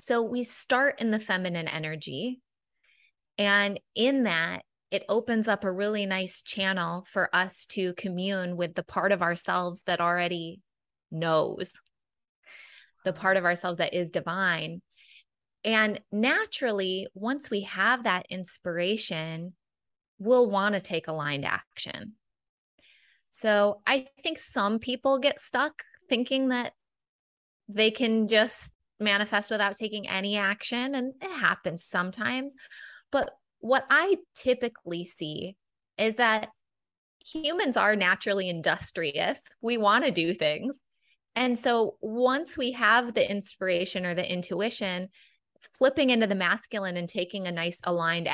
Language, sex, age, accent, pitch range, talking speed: English, female, 20-39, American, 180-235 Hz, 130 wpm